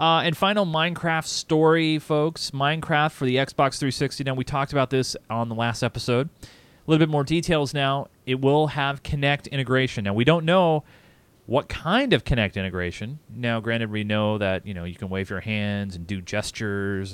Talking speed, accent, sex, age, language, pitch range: 195 wpm, American, male, 30-49, English, 105-145 Hz